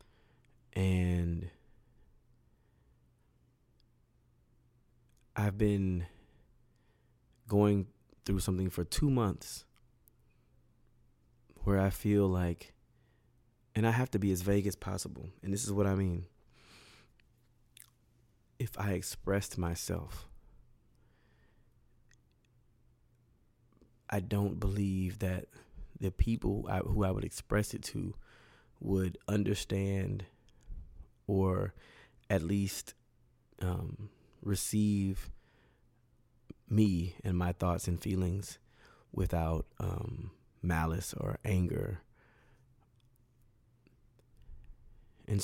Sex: male